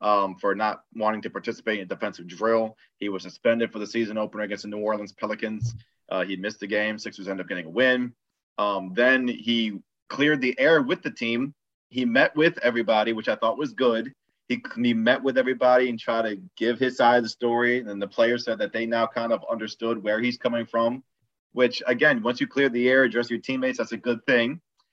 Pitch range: 110-125 Hz